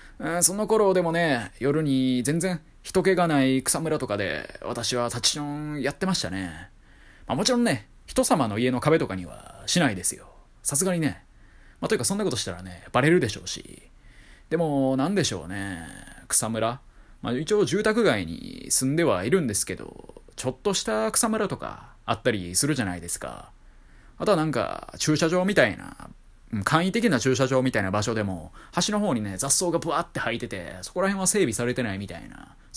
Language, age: Japanese, 20-39